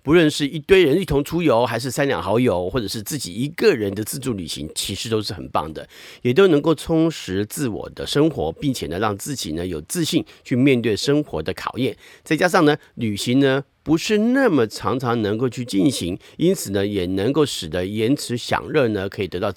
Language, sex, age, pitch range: Chinese, male, 50-69, 105-150 Hz